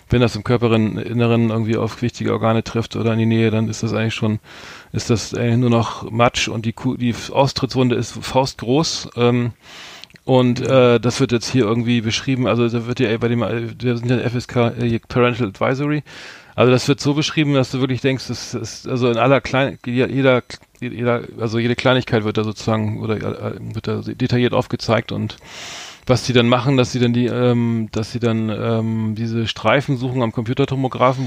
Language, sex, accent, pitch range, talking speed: German, male, German, 110-125 Hz, 195 wpm